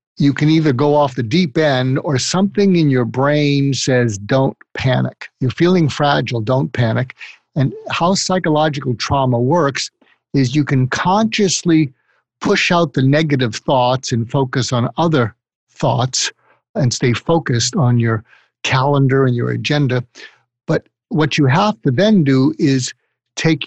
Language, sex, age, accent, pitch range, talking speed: English, male, 50-69, American, 130-160 Hz, 145 wpm